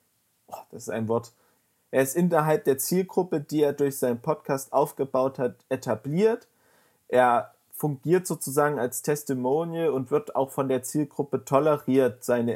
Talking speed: 145 wpm